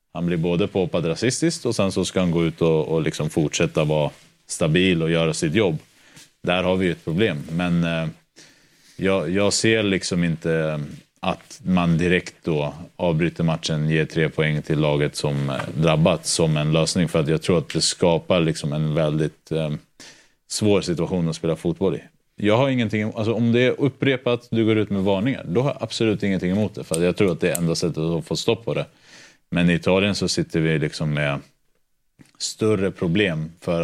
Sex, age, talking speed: male, 30-49, 200 wpm